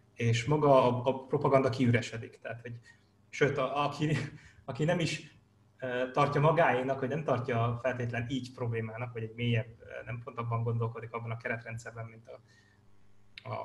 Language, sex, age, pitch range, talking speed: Hungarian, male, 20-39, 110-130 Hz, 155 wpm